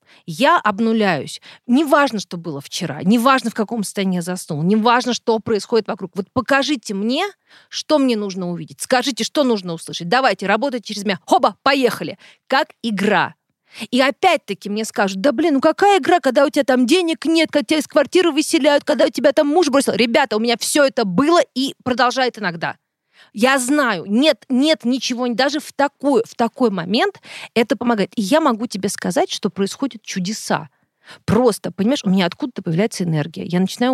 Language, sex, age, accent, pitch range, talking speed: Russian, female, 30-49, native, 190-265 Hz, 180 wpm